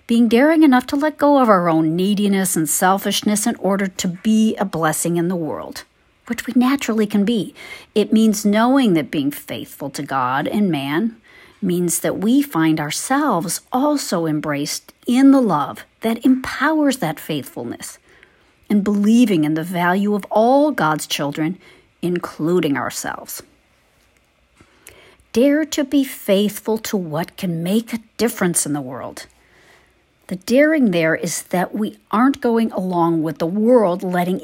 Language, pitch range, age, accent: English, 180-245 Hz, 50-69, American